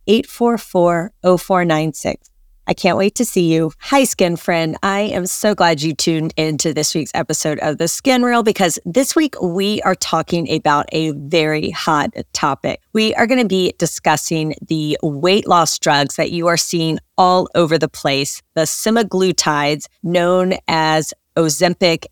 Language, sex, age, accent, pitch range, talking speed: English, female, 40-59, American, 160-195 Hz, 175 wpm